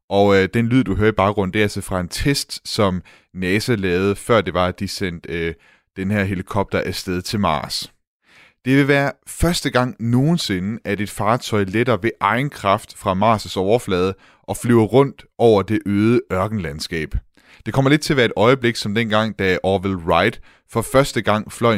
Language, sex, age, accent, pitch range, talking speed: Danish, male, 30-49, native, 95-115 Hz, 195 wpm